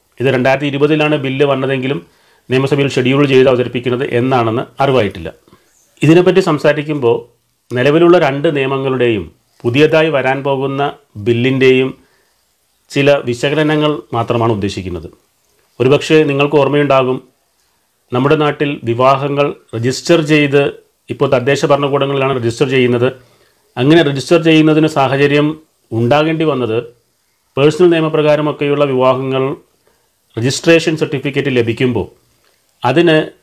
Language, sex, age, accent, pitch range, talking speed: Malayalam, male, 40-59, native, 125-150 Hz, 90 wpm